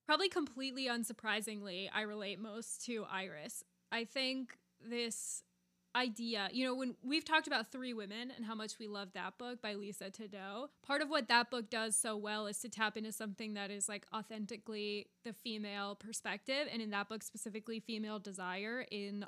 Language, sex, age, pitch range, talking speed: English, female, 10-29, 205-245 Hz, 180 wpm